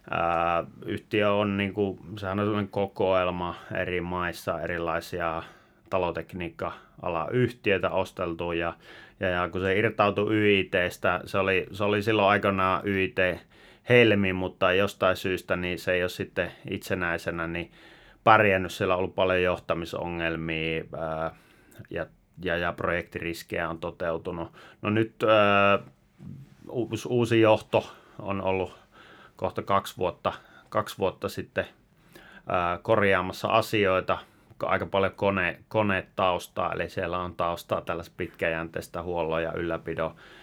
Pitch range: 85-100 Hz